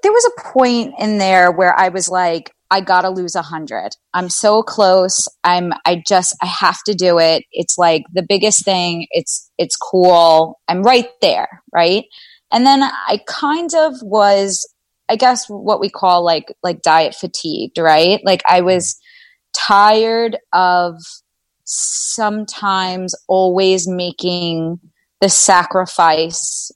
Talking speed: 145 wpm